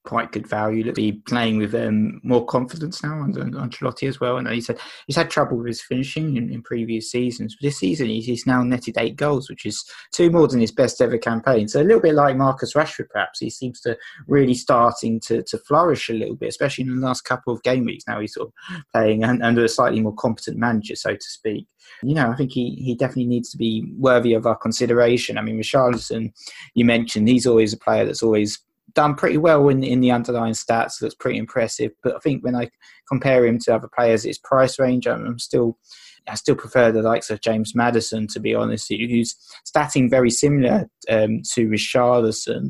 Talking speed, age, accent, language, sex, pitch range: 220 wpm, 20-39, British, English, male, 115-130 Hz